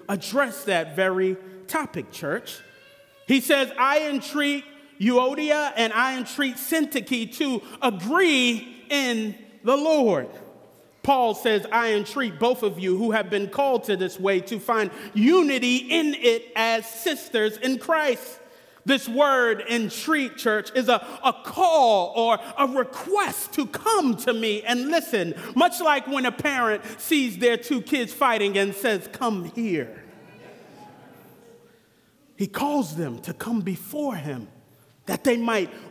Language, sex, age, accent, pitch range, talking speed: English, male, 30-49, American, 220-290 Hz, 140 wpm